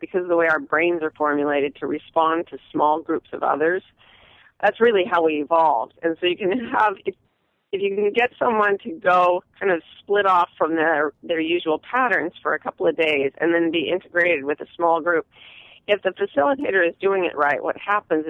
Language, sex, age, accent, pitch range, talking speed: English, female, 40-59, American, 155-190 Hz, 205 wpm